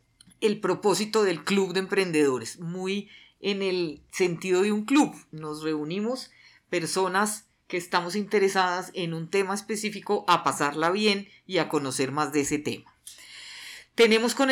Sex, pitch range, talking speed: female, 170-200 Hz, 145 wpm